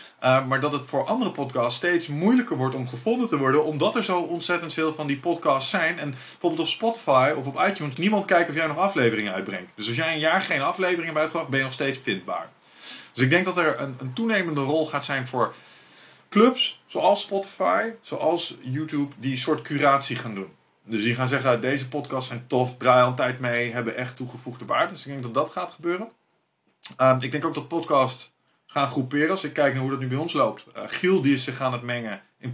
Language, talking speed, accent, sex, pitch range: Dutch, 230 wpm, Dutch, male, 130-165 Hz